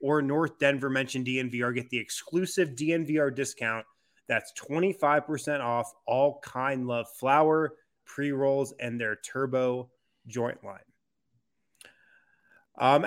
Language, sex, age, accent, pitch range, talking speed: English, male, 30-49, American, 120-155 Hz, 125 wpm